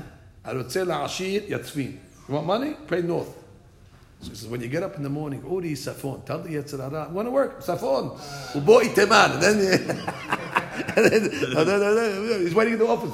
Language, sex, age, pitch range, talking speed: English, male, 50-69, 135-200 Hz, 125 wpm